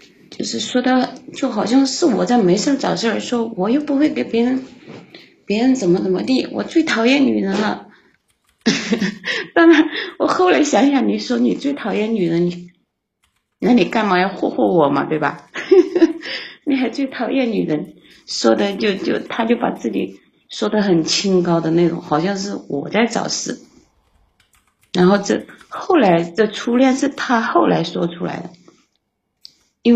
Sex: female